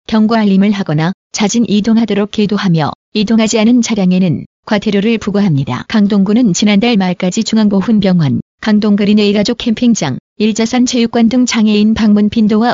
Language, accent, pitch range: Korean, native, 200-225 Hz